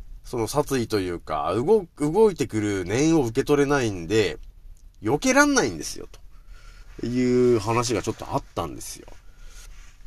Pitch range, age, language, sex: 95-165 Hz, 40-59, Japanese, male